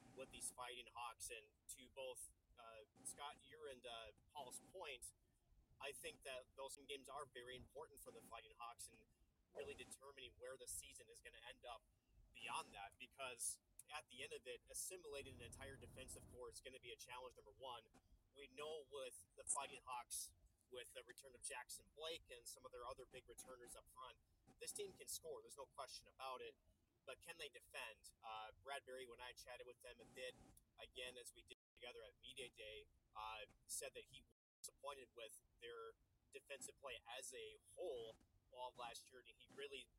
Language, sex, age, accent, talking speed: English, male, 30-49, American, 195 wpm